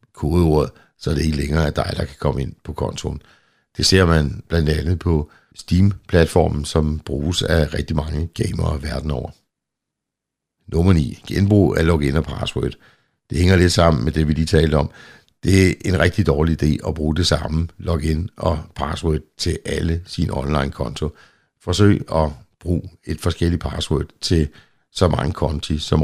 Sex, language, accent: male, Danish, native